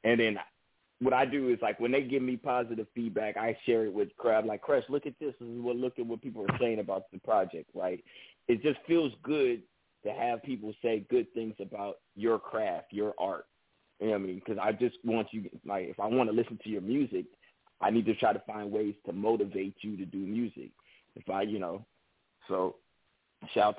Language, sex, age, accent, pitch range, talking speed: English, male, 30-49, American, 100-125 Hz, 225 wpm